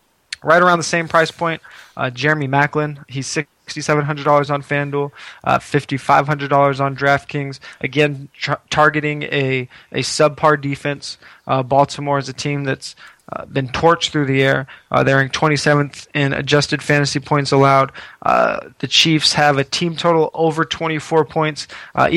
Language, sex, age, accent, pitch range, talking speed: English, male, 20-39, American, 140-155 Hz, 150 wpm